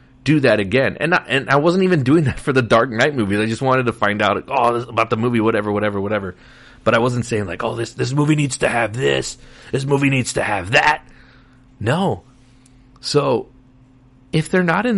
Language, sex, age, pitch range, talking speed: English, male, 30-49, 120-150 Hz, 225 wpm